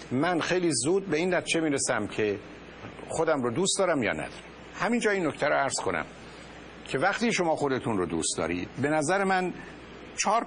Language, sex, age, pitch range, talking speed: Persian, male, 50-69, 125-185 Hz, 185 wpm